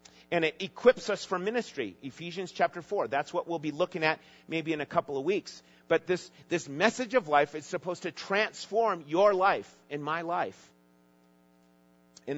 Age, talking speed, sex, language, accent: 40-59, 180 wpm, male, English, American